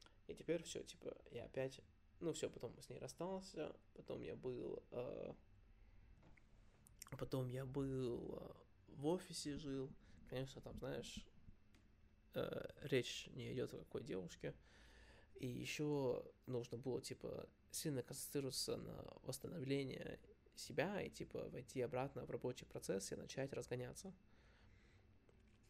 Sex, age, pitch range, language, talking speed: male, 20-39, 100-140 Hz, Russian, 125 wpm